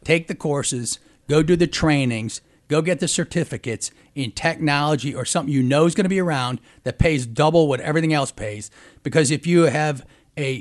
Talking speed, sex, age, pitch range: 190 wpm, male, 40-59, 135-175 Hz